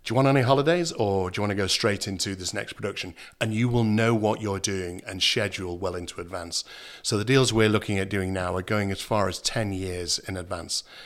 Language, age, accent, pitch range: English, 50-69, British, 95-120 Hz